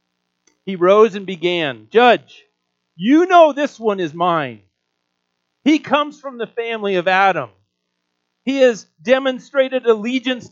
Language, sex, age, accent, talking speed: English, male, 40-59, American, 125 wpm